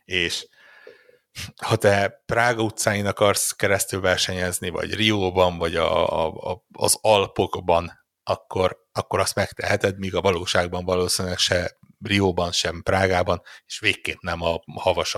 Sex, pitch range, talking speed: male, 85-100 Hz, 130 wpm